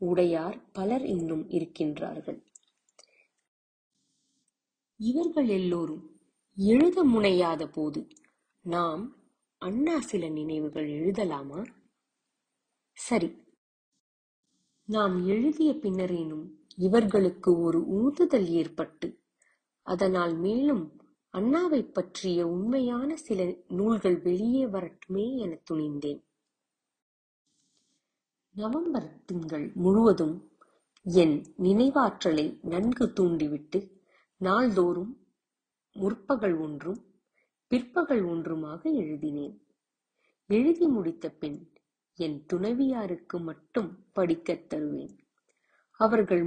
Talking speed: 70 wpm